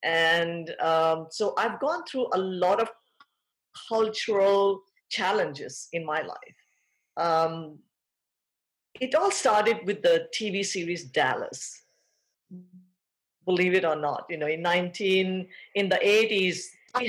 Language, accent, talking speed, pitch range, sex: English, Indian, 125 wpm, 170-225 Hz, female